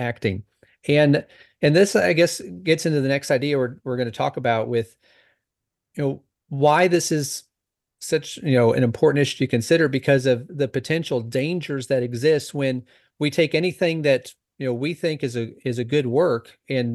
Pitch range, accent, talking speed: 125-150 Hz, American, 190 wpm